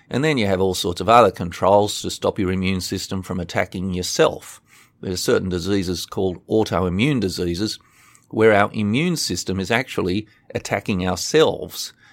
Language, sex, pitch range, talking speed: English, male, 90-110 Hz, 160 wpm